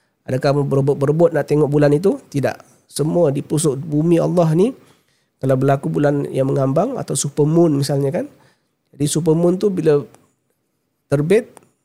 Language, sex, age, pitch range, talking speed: Malay, male, 40-59, 130-155 Hz, 140 wpm